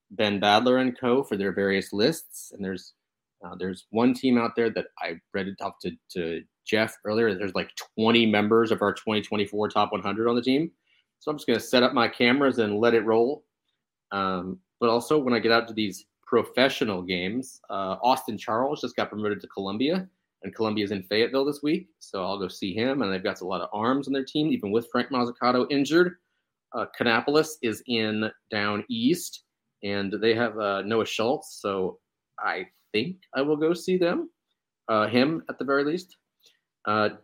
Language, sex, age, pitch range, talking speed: English, male, 30-49, 100-130 Hz, 200 wpm